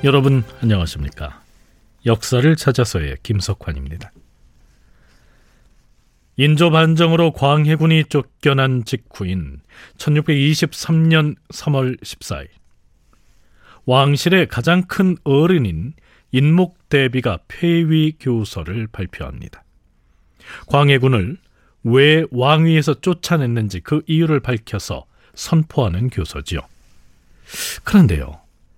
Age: 40-59